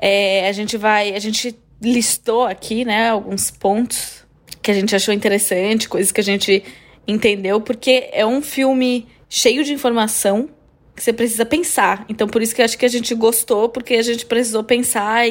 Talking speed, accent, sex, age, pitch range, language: 185 wpm, Brazilian, female, 20-39, 200-235 Hz, Portuguese